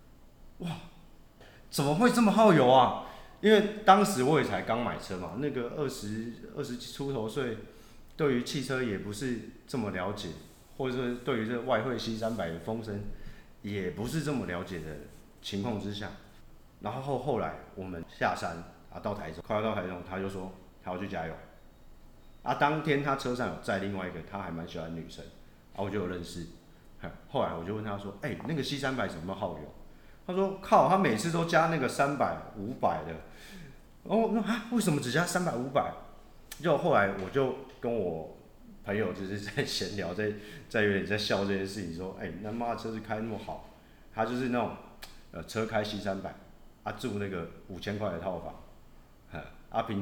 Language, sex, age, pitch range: Chinese, male, 30-49, 95-135 Hz